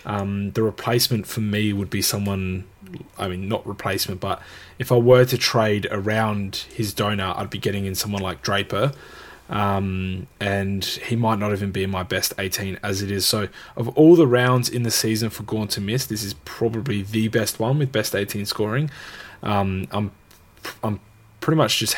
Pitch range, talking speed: 100-115 Hz, 190 wpm